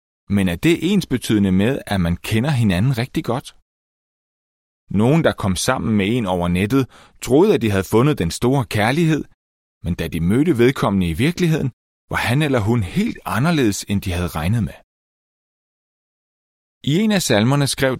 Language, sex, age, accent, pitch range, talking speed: Danish, male, 30-49, native, 85-130 Hz, 165 wpm